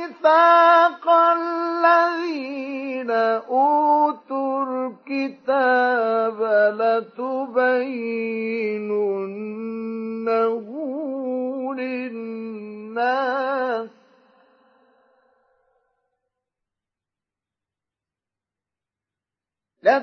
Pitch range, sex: 225-300 Hz, male